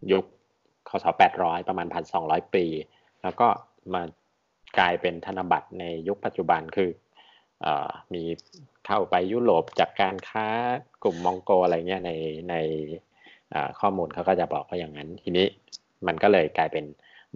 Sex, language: male, Thai